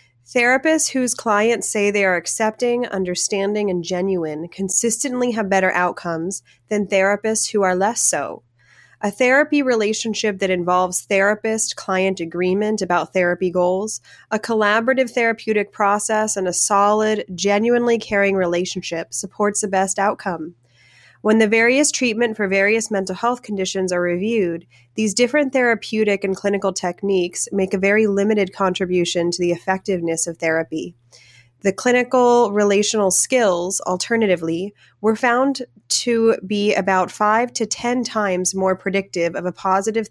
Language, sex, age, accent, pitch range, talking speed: English, female, 20-39, American, 180-220 Hz, 135 wpm